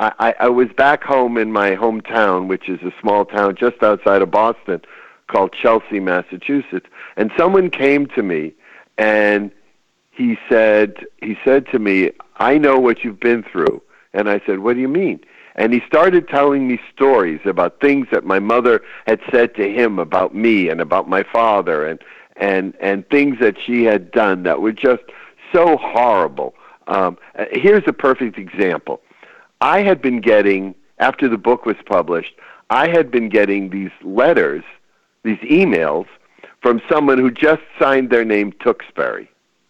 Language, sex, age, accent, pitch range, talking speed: English, male, 50-69, American, 105-135 Hz, 165 wpm